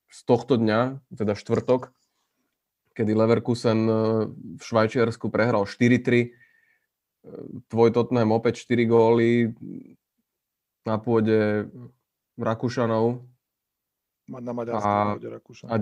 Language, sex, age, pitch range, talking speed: Slovak, male, 20-39, 110-125 Hz, 75 wpm